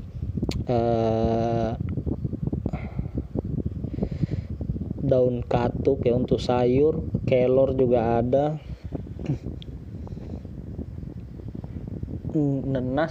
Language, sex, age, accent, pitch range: Indonesian, male, 20-39, native, 115-130 Hz